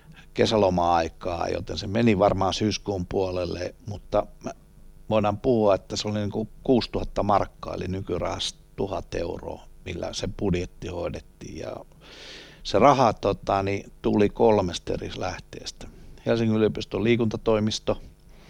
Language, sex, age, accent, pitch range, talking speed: Finnish, male, 60-79, native, 90-110 Hz, 125 wpm